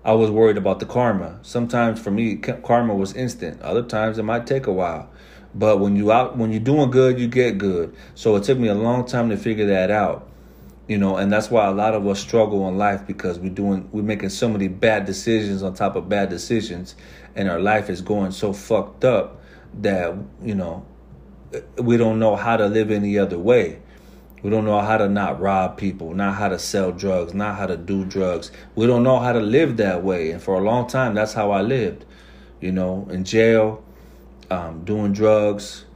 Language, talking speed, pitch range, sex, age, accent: English, 215 wpm, 100-120 Hz, male, 40-59, American